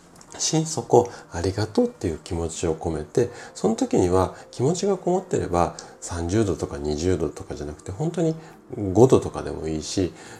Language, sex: Japanese, male